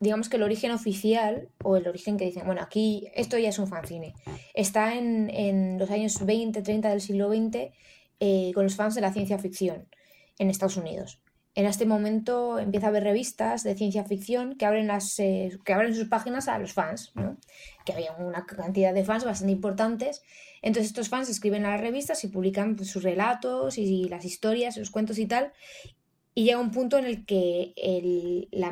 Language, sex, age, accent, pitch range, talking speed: Spanish, female, 20-39, Spanish, 195-225 Hz, 190 wpm